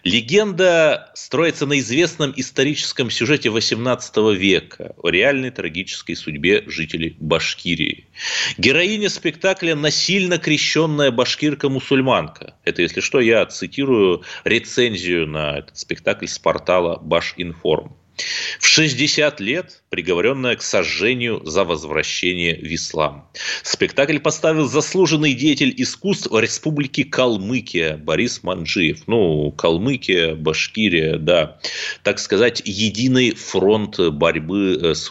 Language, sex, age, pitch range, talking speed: Russian, male, 30-49, 95-155 Hz, 105 wpm